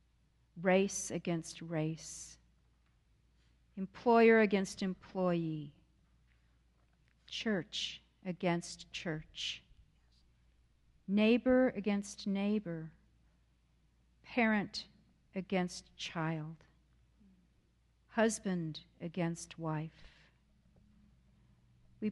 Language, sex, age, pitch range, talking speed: English, female, 50-69, 160-210 Hz, 50 wpm